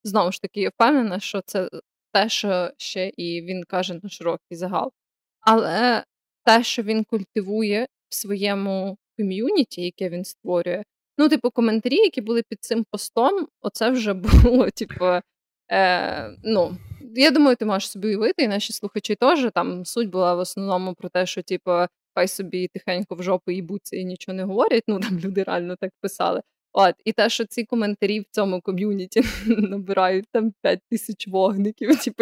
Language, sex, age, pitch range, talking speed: Ukrainian, female, 20-39, 190-230 Hz, 170 wpm